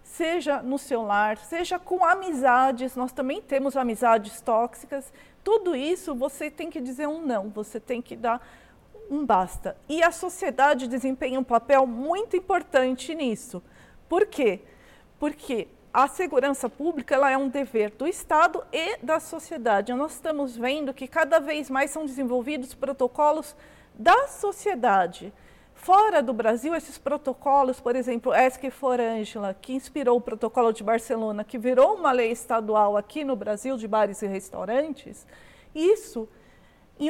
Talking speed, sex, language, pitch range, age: 145 wpm, female, English, 255-330 Hz, 40-59